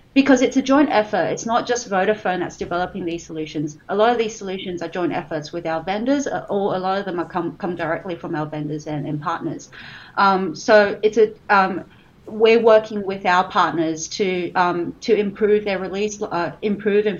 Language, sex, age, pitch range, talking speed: English, female, 30-49, 170-210 Hz, 200 wpm